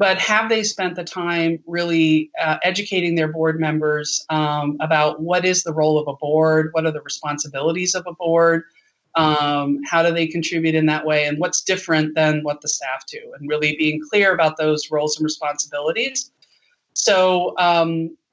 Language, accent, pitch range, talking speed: English, American, 155-185 Hz, 180 wpm